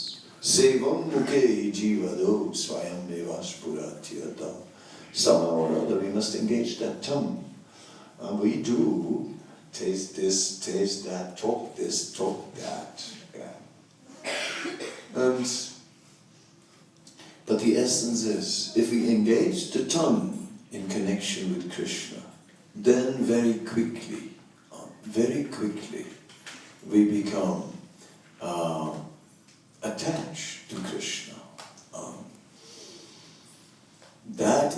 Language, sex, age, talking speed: English, male, 60-79, 95 wpm